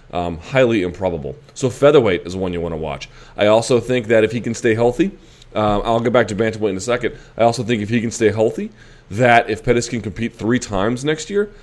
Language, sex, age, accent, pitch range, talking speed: English, male, 30-49, American, 95-115 Hz, 235 wpm